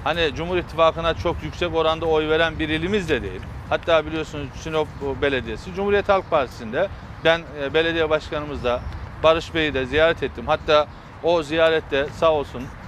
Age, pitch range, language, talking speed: 40-59, 125-170 Hz, Turkish, 155 wpm